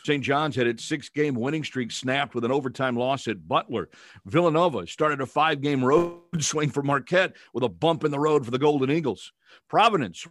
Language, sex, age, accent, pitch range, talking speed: English, male, 50-69, American, 125-160 Hz, 190 wpm